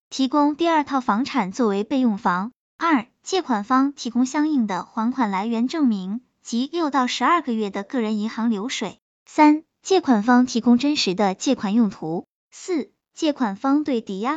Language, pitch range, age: Chinese, 220-285 Hz, 20-39